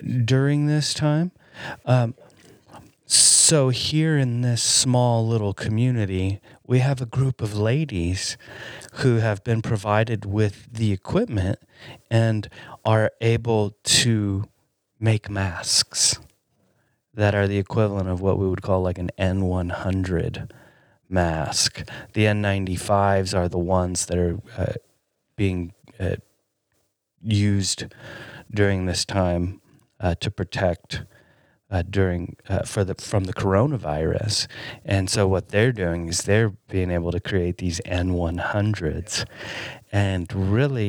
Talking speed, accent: 120 wpm, American